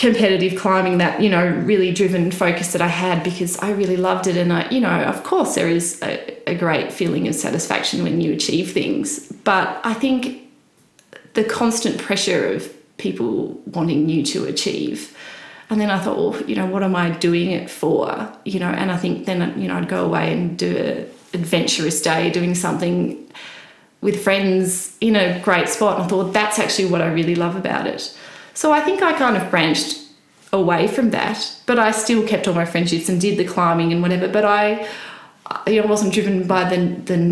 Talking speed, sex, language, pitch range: 205 wpm, female, English, 170-215 Hz